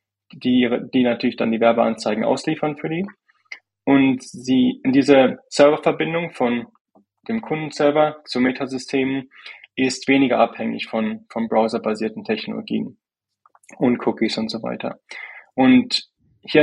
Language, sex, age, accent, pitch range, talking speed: German, male, 20-39, German, 120-150 Hz, 115 wpm